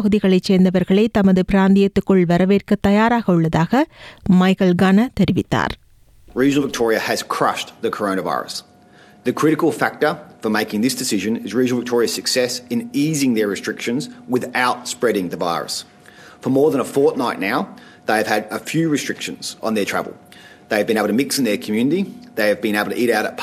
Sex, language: male, Tamil